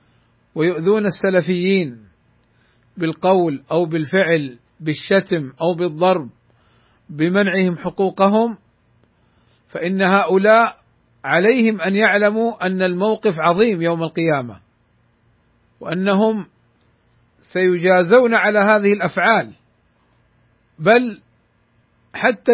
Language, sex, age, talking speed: Arabic, male, 50-69, 70 wpm